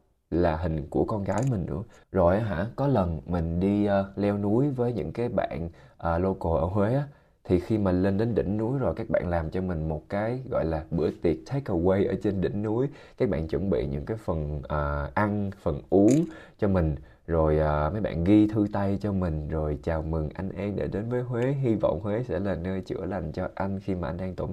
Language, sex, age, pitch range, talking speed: Vietnamese, male, 20-39, 80-110 Hz, 235 wpm